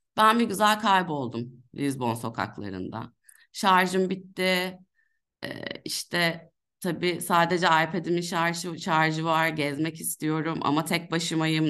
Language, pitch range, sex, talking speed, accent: Turkish, 155-210 Hz, female, 110 wpm, native